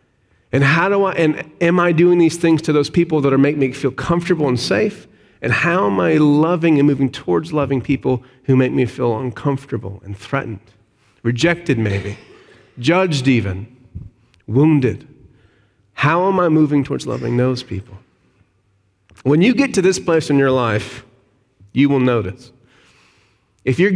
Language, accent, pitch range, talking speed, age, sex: English, American, 110-165 Hz, 165 wpm, 40-59, male